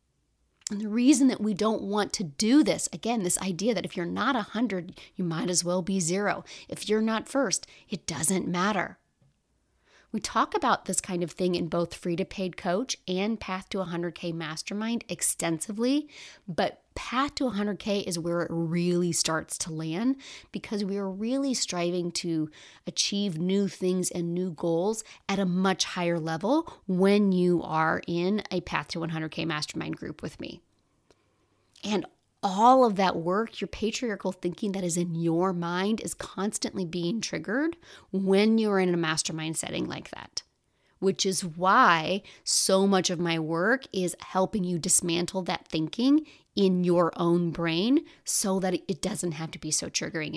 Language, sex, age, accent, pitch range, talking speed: English, female, 30-49, American, 175-210 Hz, 170 wpm